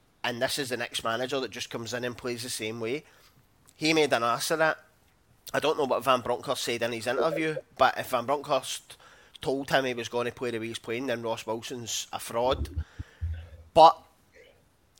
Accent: British